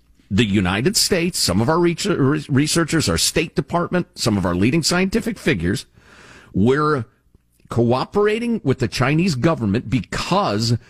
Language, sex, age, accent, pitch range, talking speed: English, male, 50-69, American, 120-205 Hz, 125 wpm